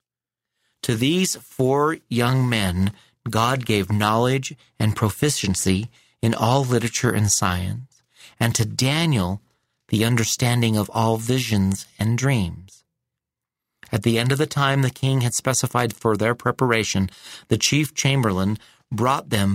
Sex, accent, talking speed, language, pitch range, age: male, American, 130 wpm, English, 105-130 Hz, 40-59